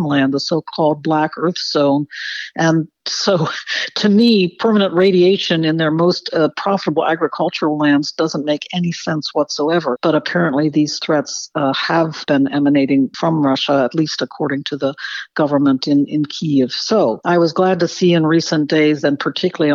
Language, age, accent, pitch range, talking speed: English, 60-79, American, 140-165 Hz, 165 wpm